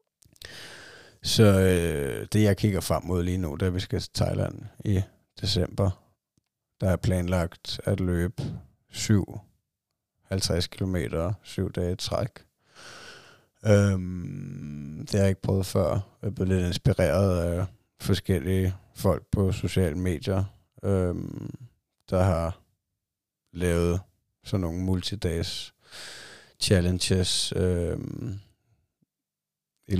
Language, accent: Danish, native